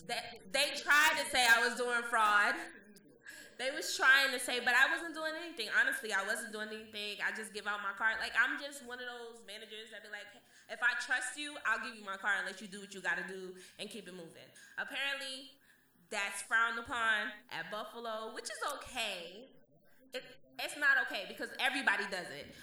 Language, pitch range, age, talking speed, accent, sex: English, 200-265 Hz, 20-39, 205 wpm, American, female